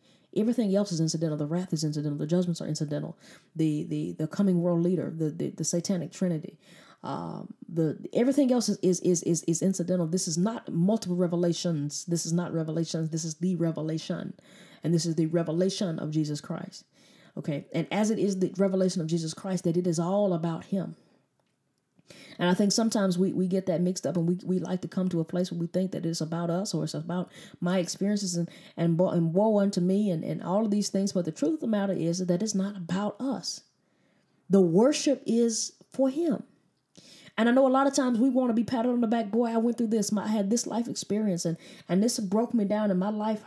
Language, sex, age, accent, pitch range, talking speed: English, female, 20-39, American, 175-225 Hz, 230 wpm